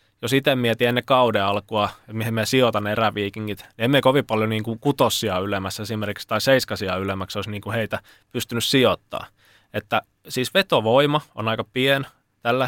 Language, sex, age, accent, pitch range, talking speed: Finnish, male, 20-39, native, 105-125 Hz, 165 wpm